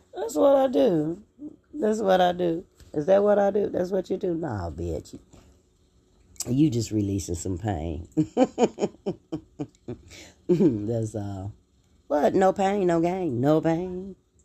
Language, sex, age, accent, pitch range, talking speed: English, female, 30-49, American, 90-120 Hz, 135 wpm